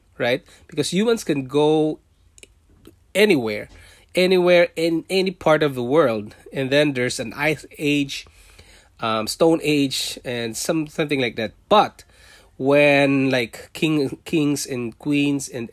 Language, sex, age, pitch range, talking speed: English, male, 20-39, 100-155 Hz, 135 wpm